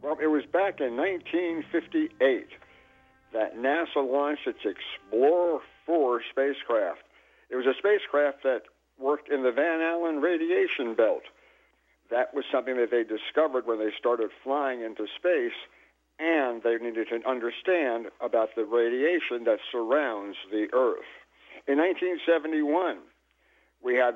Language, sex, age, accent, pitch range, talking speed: English, male, 60-79, American, 120-170 Hz, 130 wpm